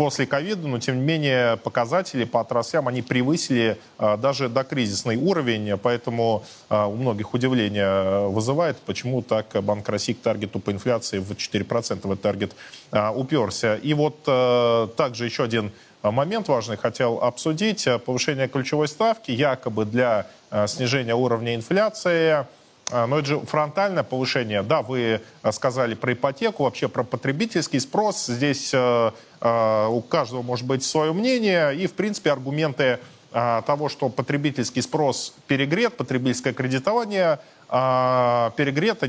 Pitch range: 115-150 Hz